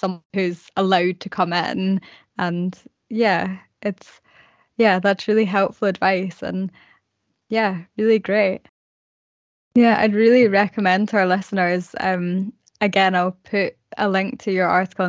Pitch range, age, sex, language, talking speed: 190-220 Hz, 10-29, female, English, 135 wpm